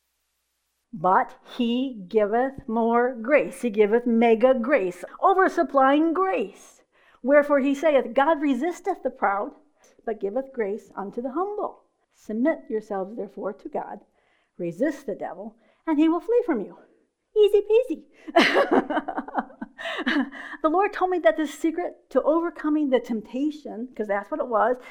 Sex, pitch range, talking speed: female, 220-315 Hz, 135 wpm